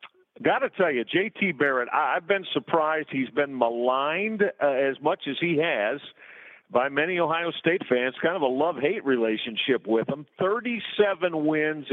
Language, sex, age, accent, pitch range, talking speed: English, male, 50-69, American, 130-155 Hz, 160 wpm